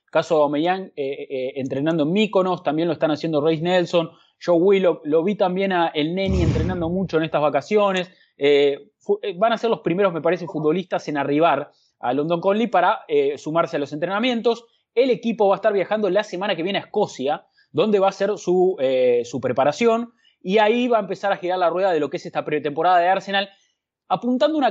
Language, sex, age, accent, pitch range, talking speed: English, male, 20-39, Argentinian, 150-195 Hz, 215 wpm